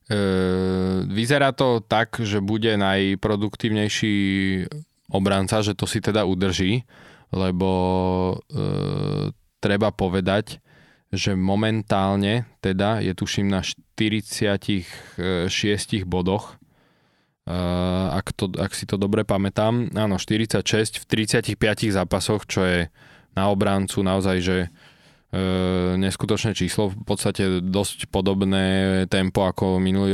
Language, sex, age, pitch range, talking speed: Slovak, male, 20-39, 95-110 Hz, 105 wpm